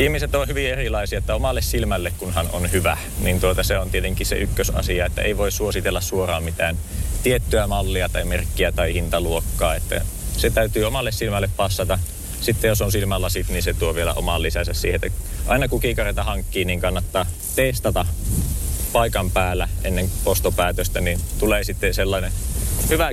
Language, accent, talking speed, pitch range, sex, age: Finnish, native, 165 wpm, 85-105 Hz, male, 30-49